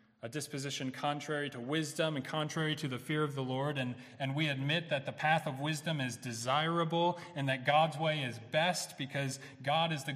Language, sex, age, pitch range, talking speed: English, male, 30-49, 135-160 Hz, 195 wpm